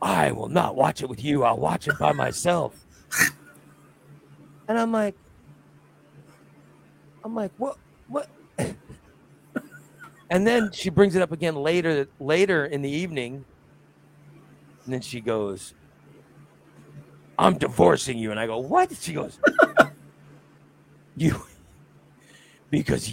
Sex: male